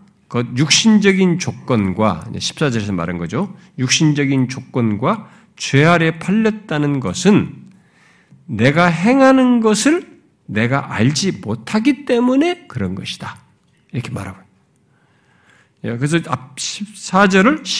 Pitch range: 130-195 Hz